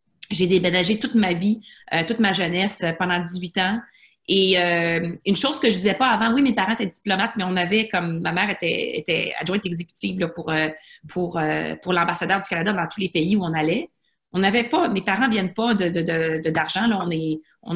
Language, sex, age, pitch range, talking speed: French, female, 30-49, 170-215 Hz, 230 wpm